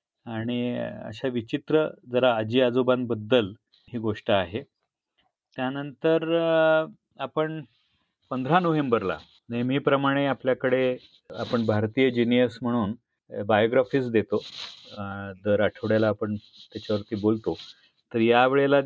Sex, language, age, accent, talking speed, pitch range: male, Marathi, 30-49, native, 90 wpm, 115-140 Hz